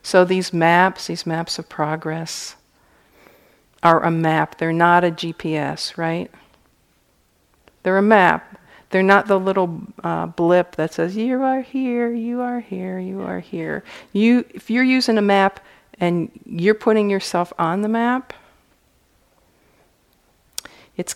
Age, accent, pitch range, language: 50-69, American, 160-195 Hz, English